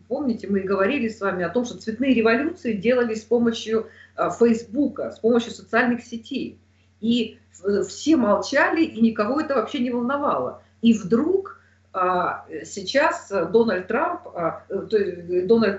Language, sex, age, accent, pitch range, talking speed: Russian, female, 40-59, native, 175-230 Hz, 125 wpm